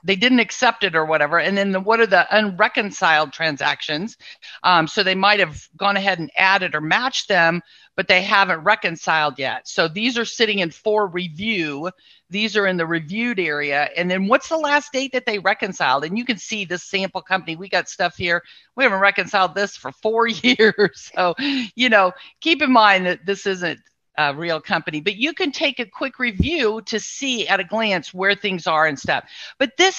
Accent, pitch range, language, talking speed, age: American, 180-240 Hz, English, 205 wpm, 50-69